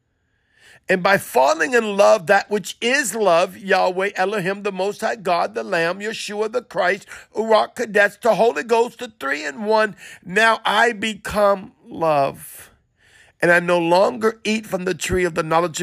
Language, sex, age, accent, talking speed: English, male, 50-69, American, 165 wpm